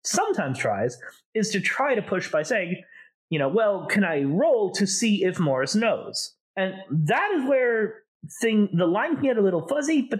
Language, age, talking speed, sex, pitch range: English, 30-49, 195 wpm, male, 145-220 Hz